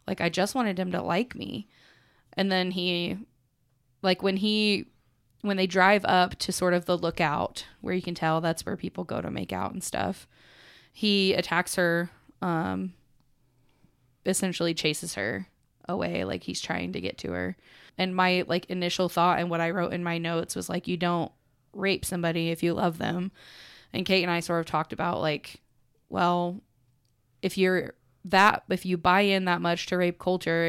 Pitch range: 165-185 Hz